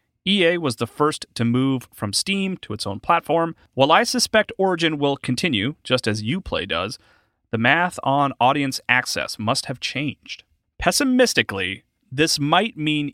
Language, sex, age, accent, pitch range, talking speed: English, male, 30-49, American, 115-175 Hz, 155 wpm